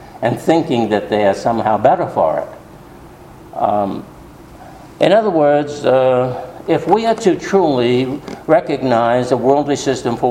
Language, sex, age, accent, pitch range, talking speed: English, male, 60-79, American, 115-145 Hz, 140 wpm